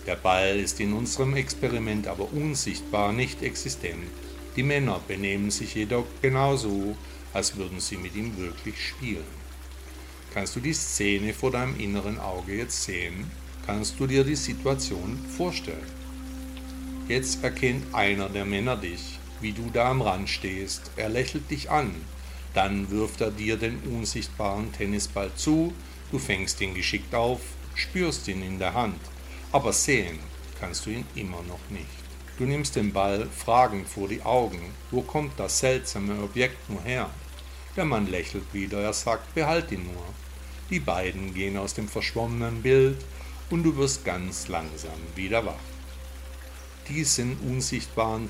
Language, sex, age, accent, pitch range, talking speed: German, male, 60-79, German, 70-110 Hz, 150 wpm